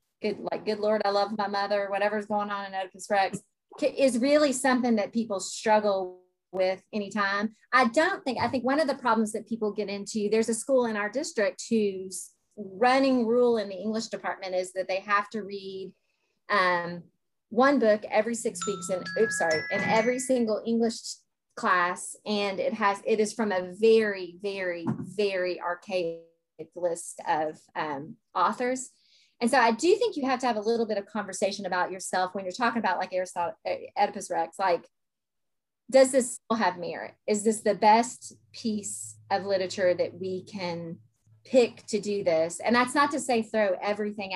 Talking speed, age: 180 wpm, 30-49